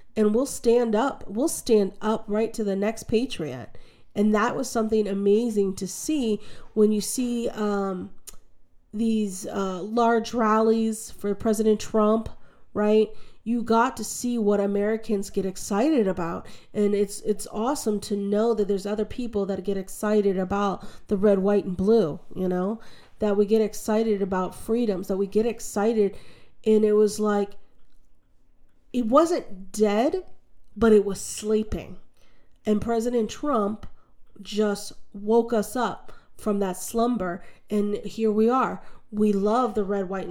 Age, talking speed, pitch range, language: 40-59, 150 wpm, 200-225 Hz, English